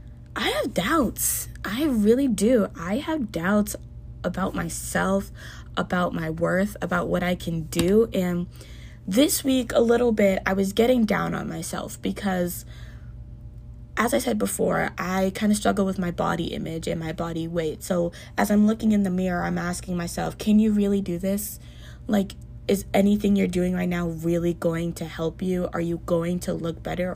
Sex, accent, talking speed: female, American, 180 wpm